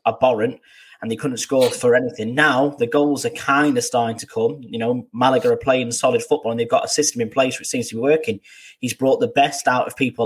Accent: British